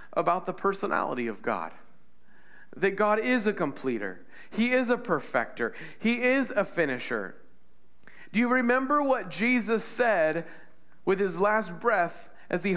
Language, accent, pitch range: English, American, 180-225 Hz